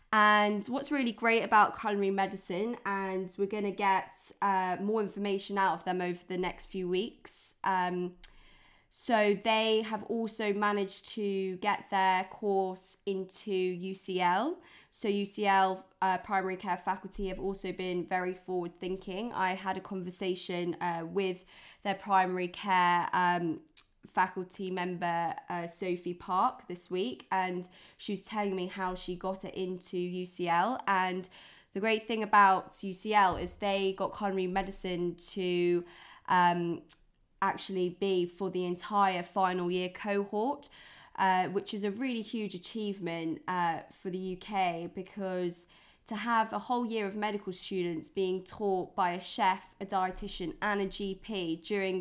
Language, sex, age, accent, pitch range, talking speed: English, female, 20-39, British, 180-200 Hz, 145 wpm